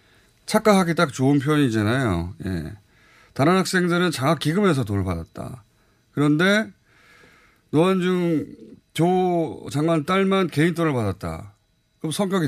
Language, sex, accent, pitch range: Korean, male, native, 110-170 Hz